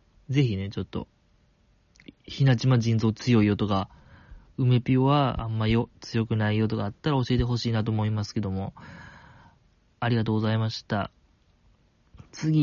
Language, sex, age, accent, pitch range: Japanese, male, 20-39, native, 110-140 Hz